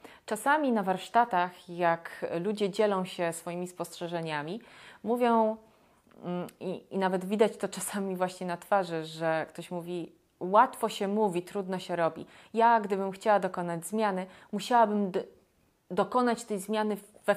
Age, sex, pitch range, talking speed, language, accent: 30-49, female, 175-220 Hz, 130 wpm, Polish, native